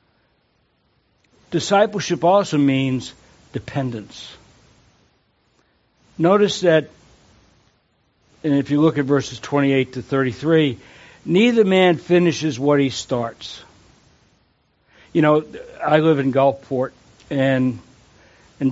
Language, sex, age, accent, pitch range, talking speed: English, male, 60-79, American, 130-160 Hz, 95 wpm